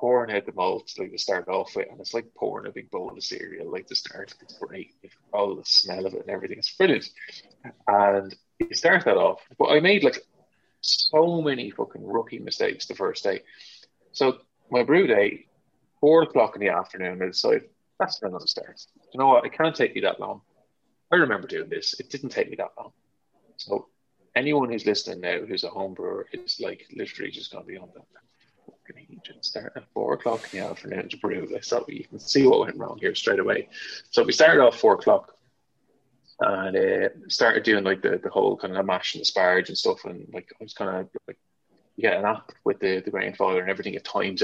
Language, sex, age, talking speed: English, male, 20-39, 220 wpm